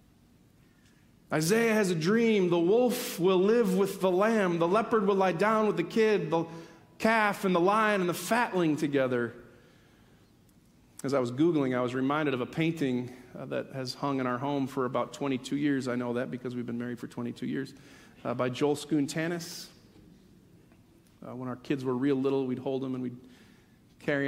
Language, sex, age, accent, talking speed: English, male, 40-59, American, 190 wpm